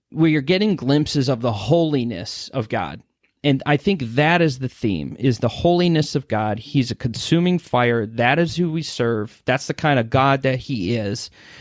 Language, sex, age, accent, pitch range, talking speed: English, male, 30-49, American, 125-160 Hz, 195 wpm